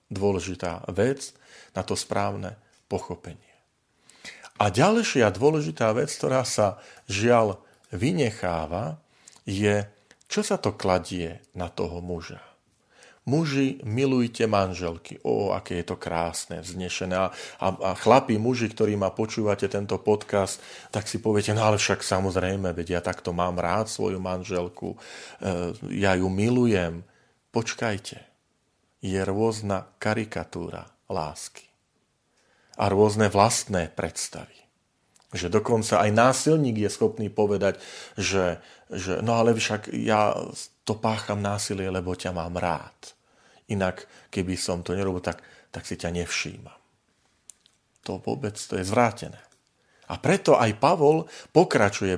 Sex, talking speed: male, 125 wpm